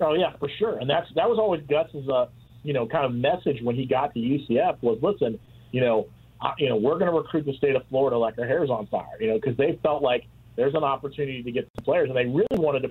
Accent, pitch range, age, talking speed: American, 120-145 Hz, 40-59, 270 wpm